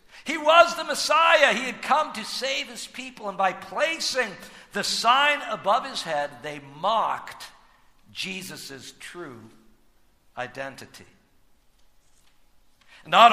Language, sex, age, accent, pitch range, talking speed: English, male, 60-79, American, 190-295 Hz, 115 wpm